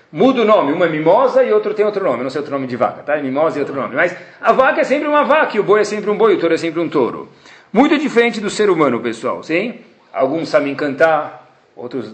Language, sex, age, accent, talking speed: Portuguese, male, 40-59, Brazilian, 265 wpm